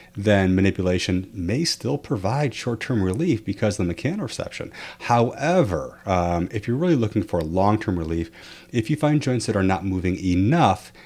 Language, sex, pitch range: English, male, 95-135 Hz